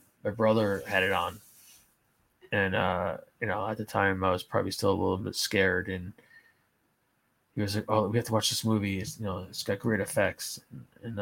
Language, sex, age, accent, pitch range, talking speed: English, male, 20-39, American, 100-115 Hz, 200 wpm